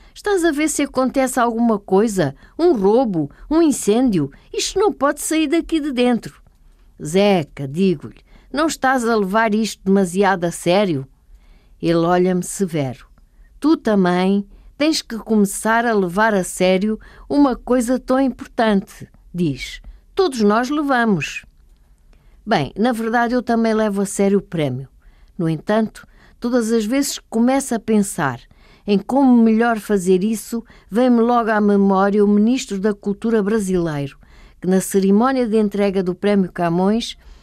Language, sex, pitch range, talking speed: Portuguese, female, 195-245 Hz, 140 wpm